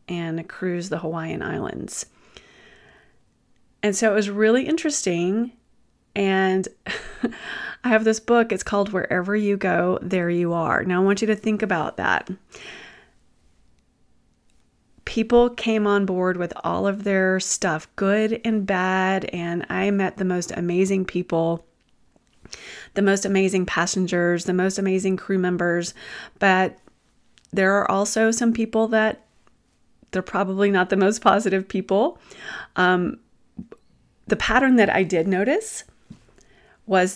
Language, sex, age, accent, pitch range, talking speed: English, female, 30-49, American, 175-205 Hz, 130 wpm